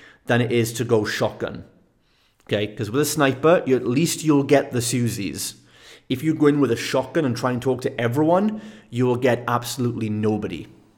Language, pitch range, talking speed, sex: English, 110-140 Hz, 195 wpm, male